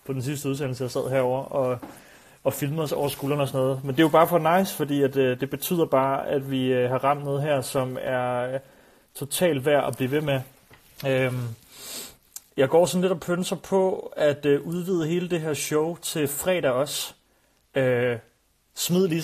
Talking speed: 185 wpm